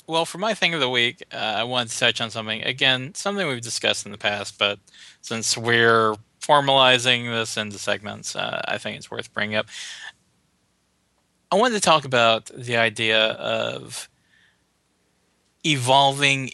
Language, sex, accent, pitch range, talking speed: English, male, American, 110-130 Hz, 160 wpm